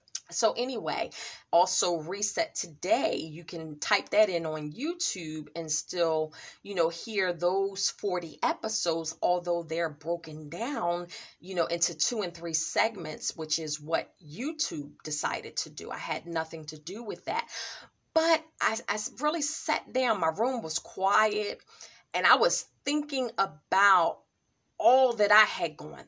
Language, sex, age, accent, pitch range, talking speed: English, female, 30-49, American, 170-230 Hz, 150 wpm